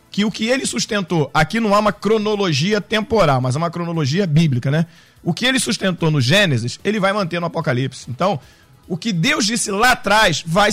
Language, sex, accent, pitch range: Portuguese, male, Brazilian, 160-225 Hz